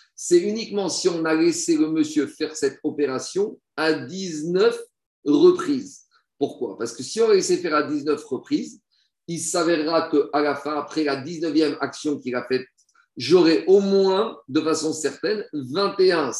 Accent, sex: French, male